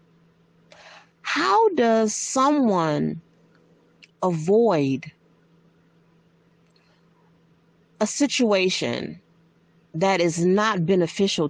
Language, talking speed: English, 50 wpm